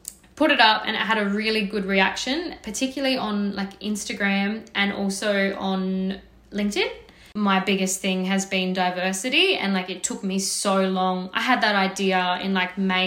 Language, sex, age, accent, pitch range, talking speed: English, female, 10-29, Australian, 195-255 Hz, 175 wpm